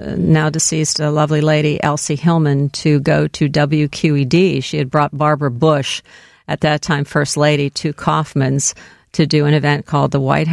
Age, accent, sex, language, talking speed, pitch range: 50-69, American, female, English, 170 wpm, 140-160 Hz